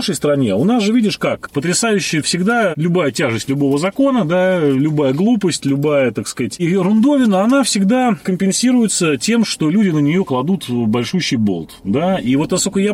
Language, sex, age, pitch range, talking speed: Russian, male, 30-49, 115-180 Hz, 175 wpm